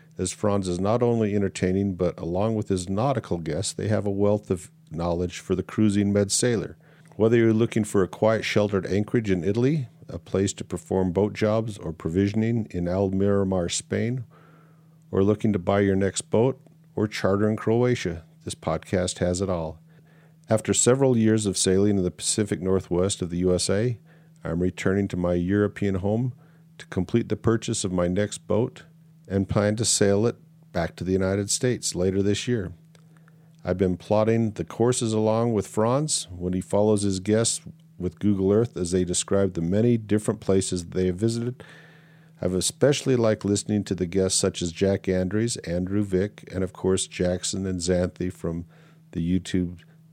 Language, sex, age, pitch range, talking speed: English, male, 50-69, 90-120 Hz, 175 wpm